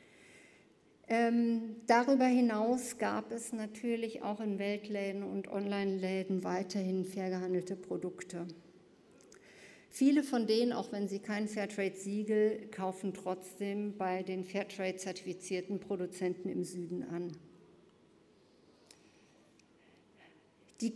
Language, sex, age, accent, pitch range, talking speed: German, female, 50-69, German, 195-245 Hz, 90 wpm